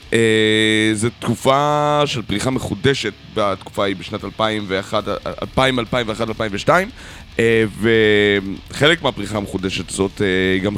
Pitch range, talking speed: 95-115 Hz, 80 wpm